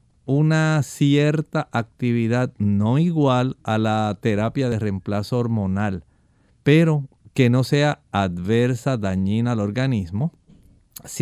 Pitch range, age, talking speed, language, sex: 110-145 Hz, 50-69, 105 wpm, Spanish, male